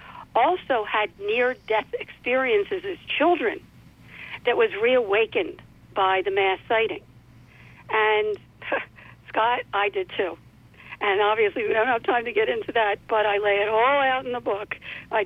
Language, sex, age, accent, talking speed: English, female, 60-79, American, 150 wpm